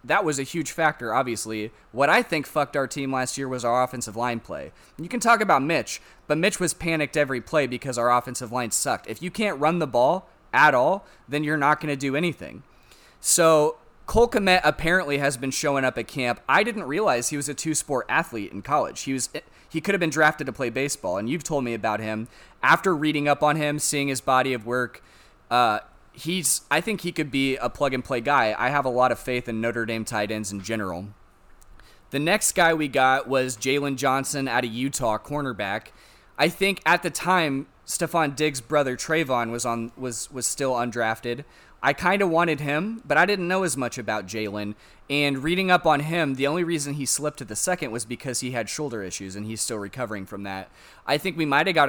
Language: English